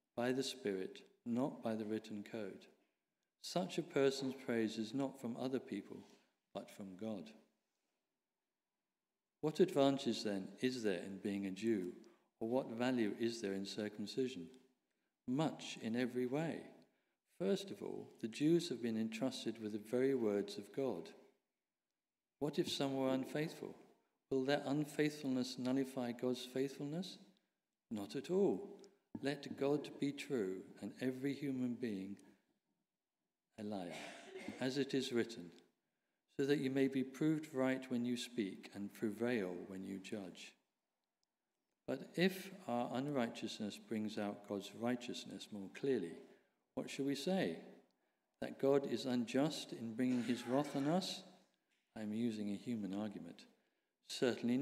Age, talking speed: 50-69, 140 wpm